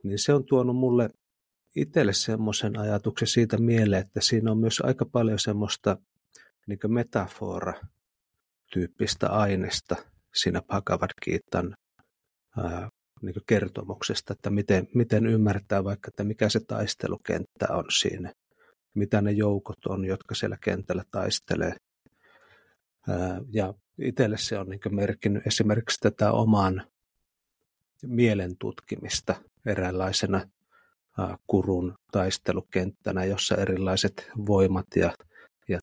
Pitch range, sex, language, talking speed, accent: 95-110 Hz, male, Finnish, 100 wpm, native